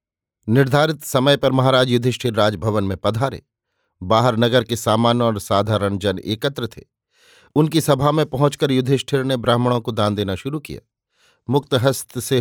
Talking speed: 155 wpm